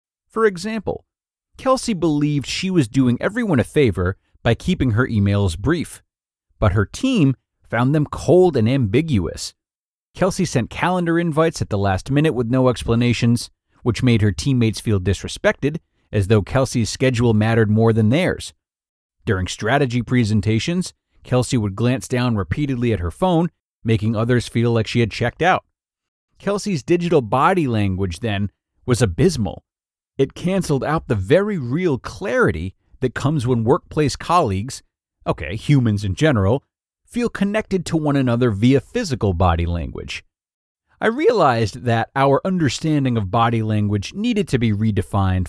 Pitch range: 105-150 Hz